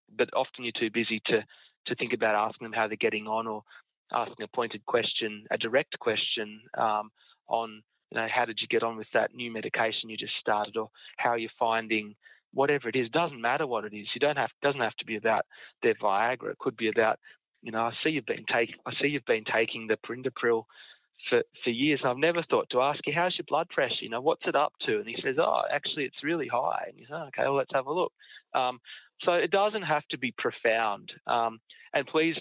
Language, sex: English, male